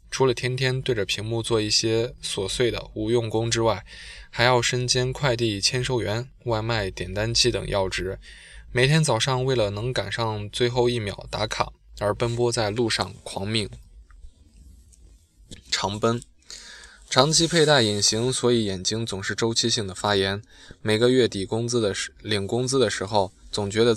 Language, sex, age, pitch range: Chinese, male, 20-39, 100-120 Hz